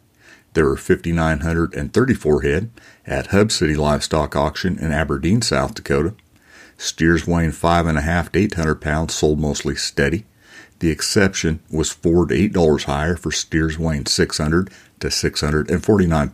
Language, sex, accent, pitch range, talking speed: English, male, American, 75-85 Hz, 130 wpm